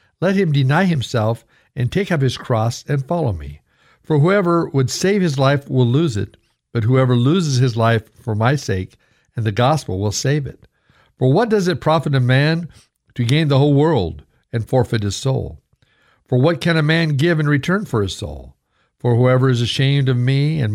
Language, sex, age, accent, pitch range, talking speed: English, male, 60-79, American, 115-150 Hz, 200 wpm